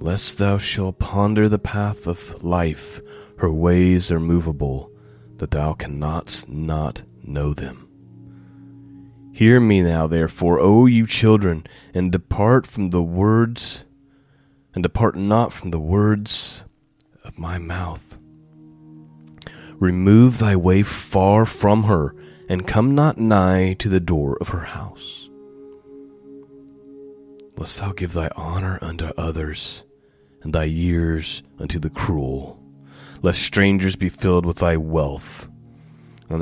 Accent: American